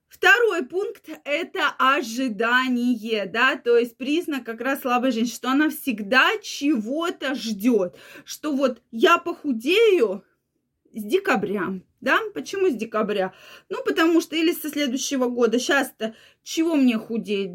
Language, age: Russian, 20-39